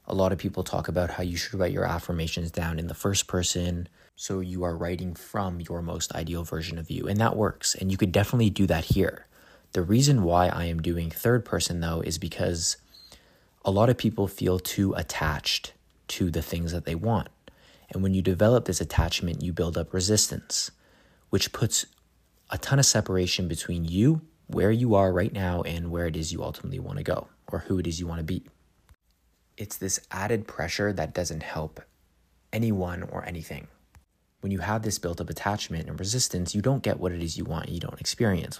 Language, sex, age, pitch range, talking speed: English, male, 20-39, 85-100 Hz, 205 wpm